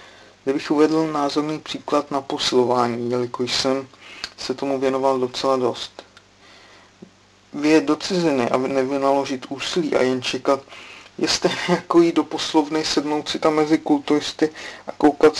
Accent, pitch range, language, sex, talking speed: native, 125-155 Hz, Czech, male, 135 wpm